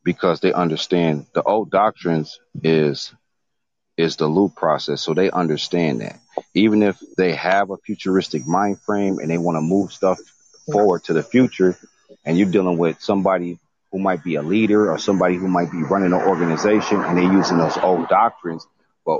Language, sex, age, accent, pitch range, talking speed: English, male, 40-59, American, 80-95 Hz, 180 wpm